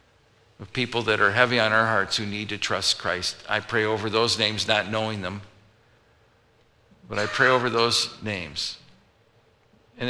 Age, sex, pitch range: 50-69, male, 100-115 Hz